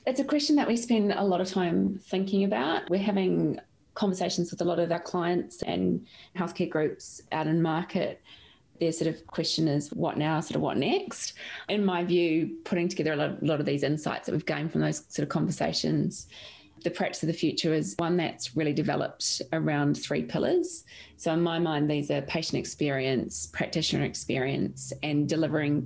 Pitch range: 145-175 Hz